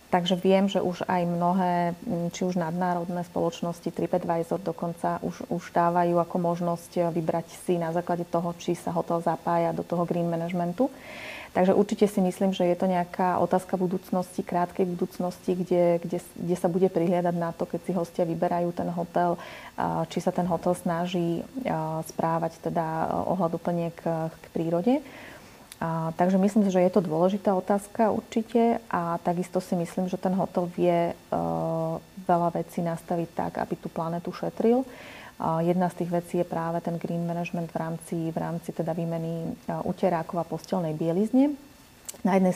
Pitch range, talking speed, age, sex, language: 170-185 Hz, 165 wpm, 30-49, female, Slovak